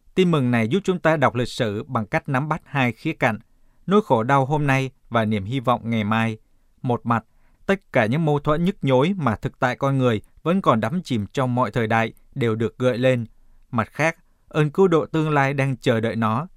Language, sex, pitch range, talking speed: Vietnamese, male, 115-155 Hz, 230 wpm